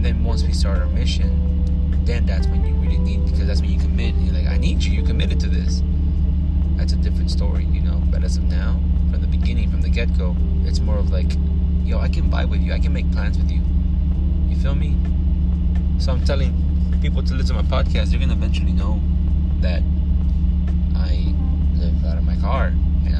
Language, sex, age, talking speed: English, male, 20-39, 220 wpm